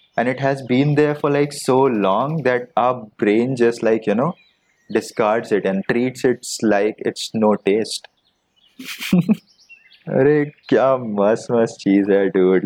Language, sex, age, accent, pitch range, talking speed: Hindi, male, 20-39, native, 115-145 Hz, 150 wpm